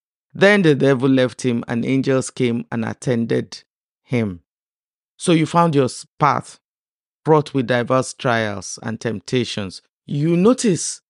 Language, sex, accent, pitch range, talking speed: English, male, Nigerian, 120-165 Hz, 130 wpm